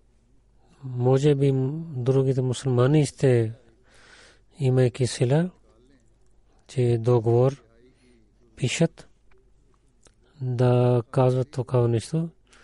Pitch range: 120-135 Hz